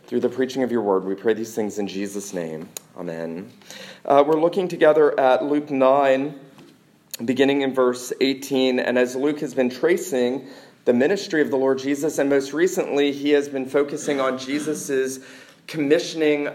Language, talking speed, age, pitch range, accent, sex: English, 170 wpm, 40-59, 125-150 Hz, American, male